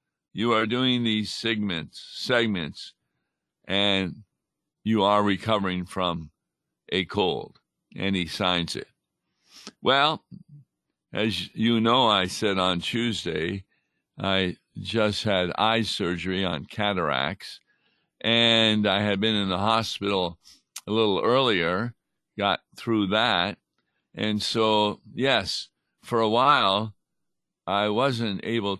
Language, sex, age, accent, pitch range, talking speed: English, male, 50-69, American, 95-115 Hz, 115 wpm